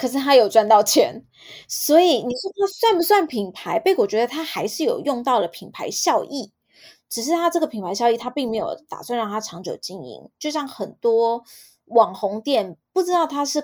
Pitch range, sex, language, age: 220-310 Hz, female, Chinese, 20-39